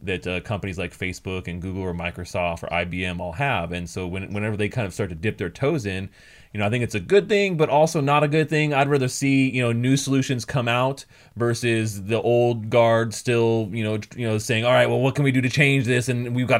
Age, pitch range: 20-39, 100-125 Hz